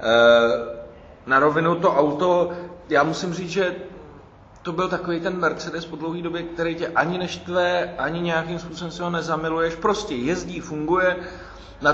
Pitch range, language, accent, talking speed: 130-165 Hz, Czech, native, 150 wpm